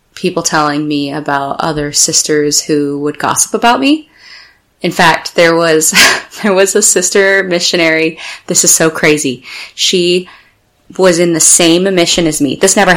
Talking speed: 155 wpm